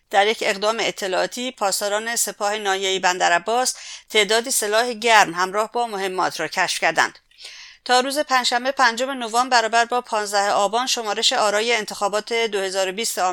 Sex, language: female, English